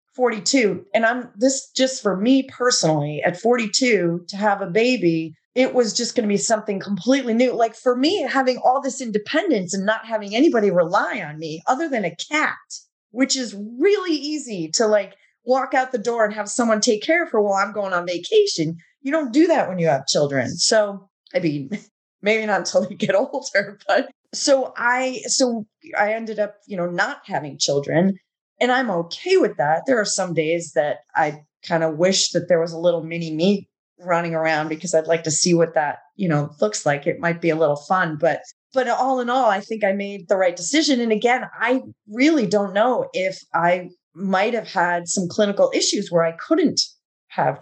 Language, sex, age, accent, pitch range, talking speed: English, female, 30-49, American, 175-250 Hz, 205 wpm